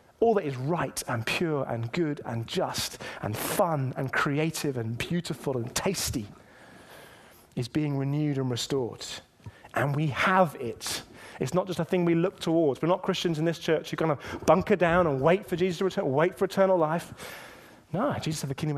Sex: male